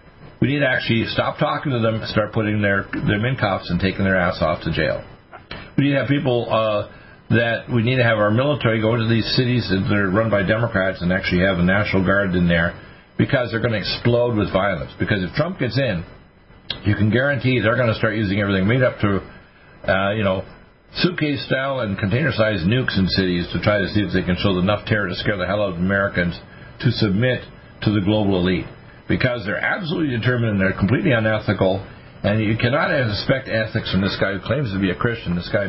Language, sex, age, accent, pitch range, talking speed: English, male, 50-69, American, 95-120 Hz, 220 wpm